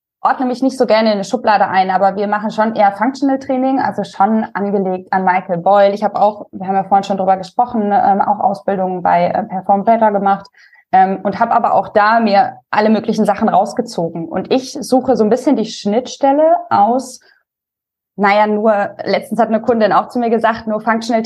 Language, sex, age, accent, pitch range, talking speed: German, female, 20-39, German, 195-230 Hz, 200 wpm